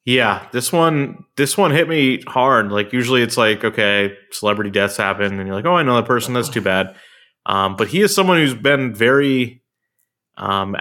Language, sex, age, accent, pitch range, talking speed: English, male, 30-49, American, 100-130 Hz, 200 wpm